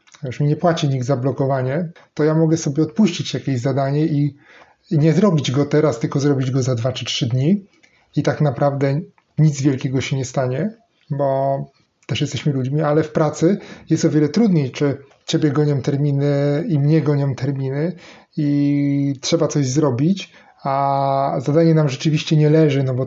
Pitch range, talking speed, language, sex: 135-160 Hz, 170 wpm, Polish, male